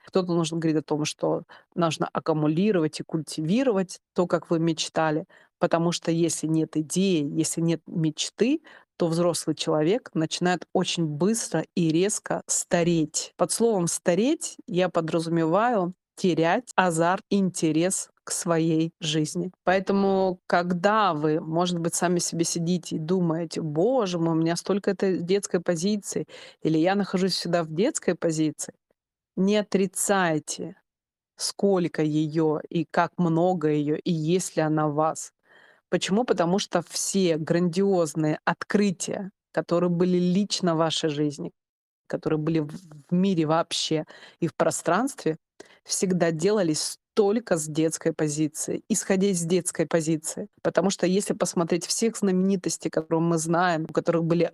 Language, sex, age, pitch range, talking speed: Russian, female, 30-49, 160-190 Hz, 135 wpm